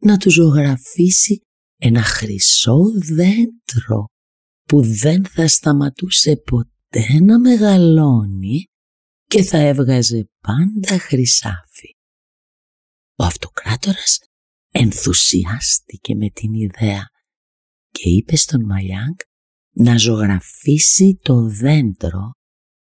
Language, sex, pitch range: Greek, female, 100-165 Hz